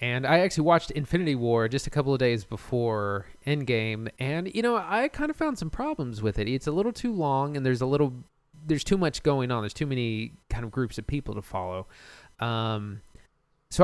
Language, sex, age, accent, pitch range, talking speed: English, male, 20-39, American, 115-150 Hz, 215 wpm